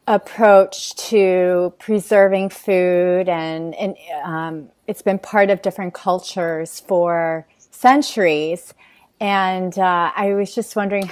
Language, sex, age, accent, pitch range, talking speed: English, female, 30-49, American, 180-215 Hz, 115 wpm